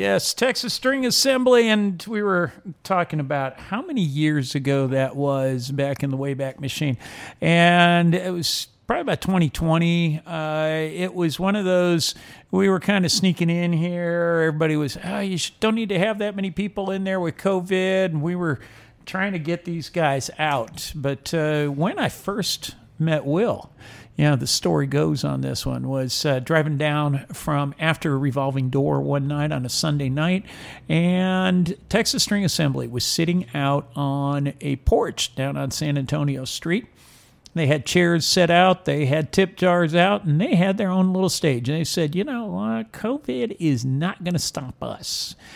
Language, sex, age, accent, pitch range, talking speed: English, male, 50-69, American, 140-185 Hz, 180 wpm